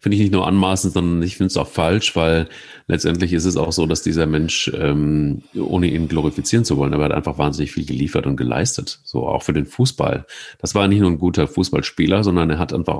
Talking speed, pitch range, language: 230 wpm, 80-100 Hz, German